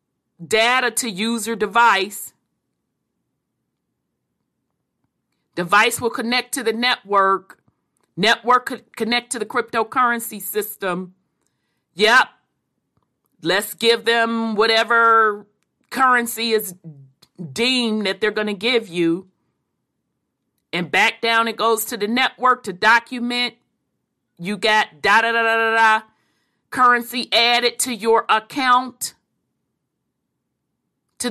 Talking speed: 100 wpm